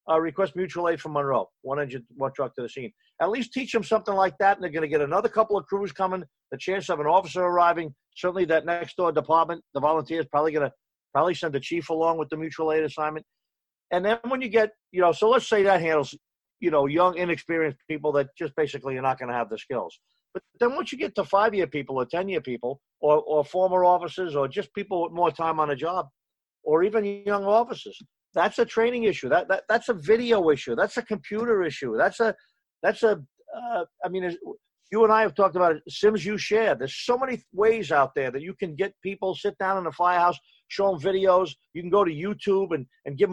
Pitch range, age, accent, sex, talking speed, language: 160-205 Hz, 50-69, American, male, 230 wpm, English